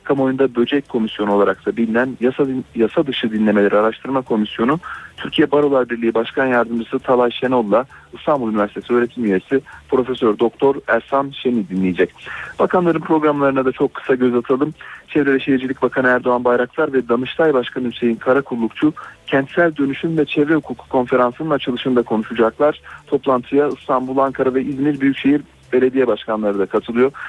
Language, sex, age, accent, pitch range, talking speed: Turkish, male, 40-59, native, 115-140 Hz, 145 wpm